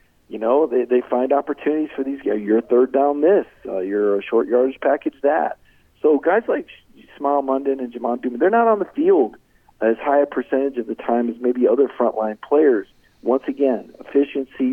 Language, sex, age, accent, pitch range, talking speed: English, male, 50-69, American, 120-150 Hz, 200 wpm